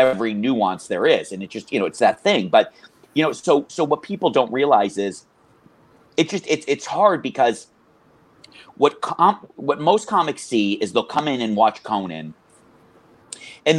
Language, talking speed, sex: English, 185 wpm, male